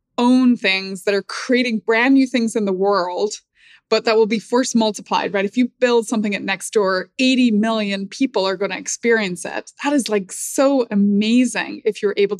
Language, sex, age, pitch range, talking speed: English, female, 20-39, 195-245 Hz, 195 wpm